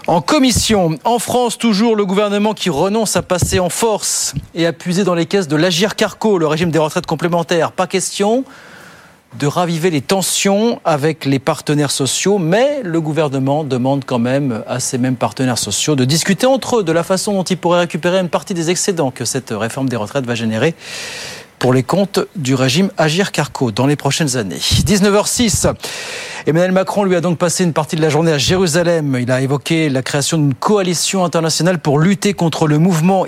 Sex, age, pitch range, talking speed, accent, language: male, 40-59, 145-190 Hz, 195 wpm, French, French